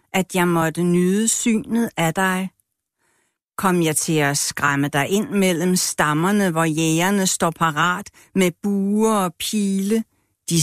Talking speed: 140 wpm